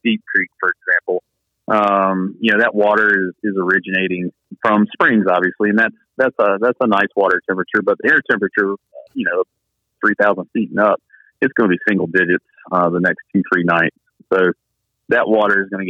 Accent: American